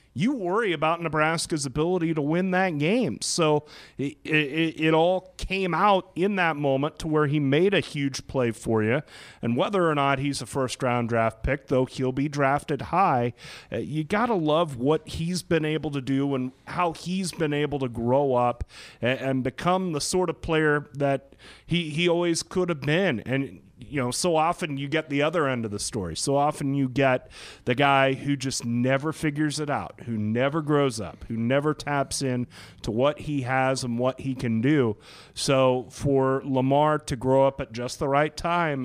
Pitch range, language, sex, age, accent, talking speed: 125-155 Hz, English, male, 30-49, American, 200 wpm